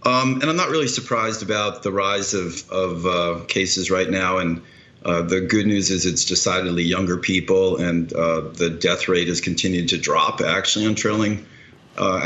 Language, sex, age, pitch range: English, male, 40-59, 85-100 Hz